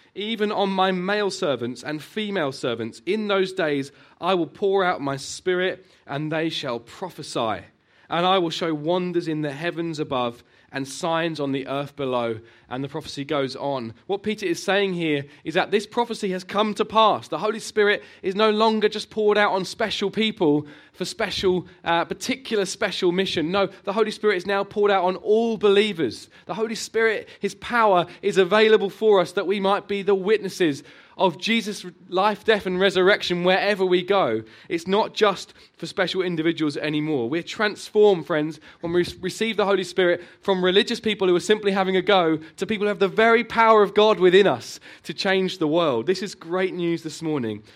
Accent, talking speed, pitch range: British, 190 wpm, 155-205 Hz